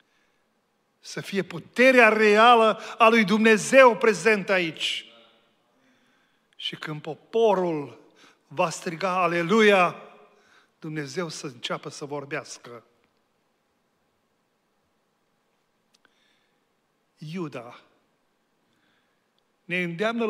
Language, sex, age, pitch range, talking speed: Romanian, male, 40-59, 175-230 Hz, 70 wpm